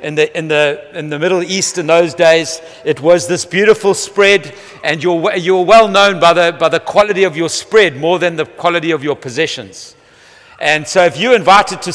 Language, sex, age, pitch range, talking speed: English, male, 60-79, 160-200 Hz, 210 wpm